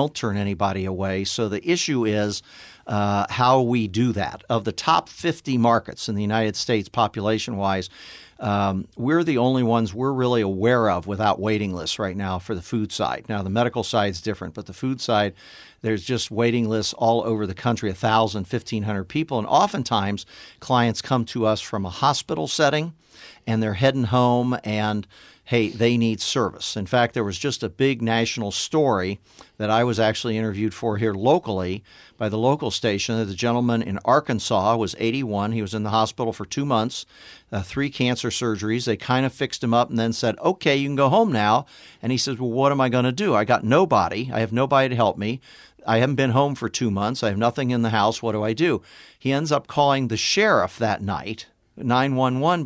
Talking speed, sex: 210 wpm, male